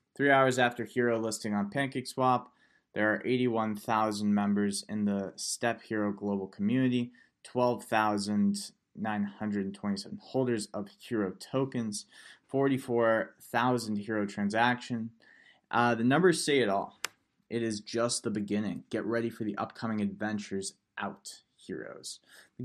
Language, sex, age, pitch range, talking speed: English, male, 20-39, 105-125 Hz, 120 wpm